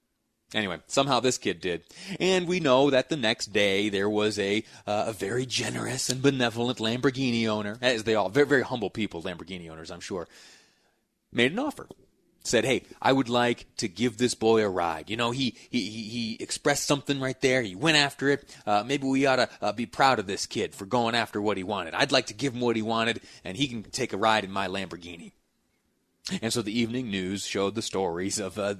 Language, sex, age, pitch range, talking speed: English, male, 30-49, 105-130 Hz, 220 wpm